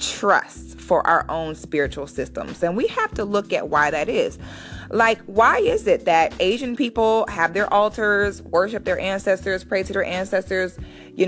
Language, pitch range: English, 175-225 Hz